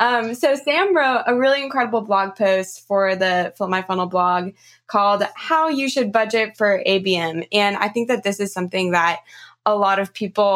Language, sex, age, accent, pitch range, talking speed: English, female, 20-39, American, 190-240 Hz, 195 wpm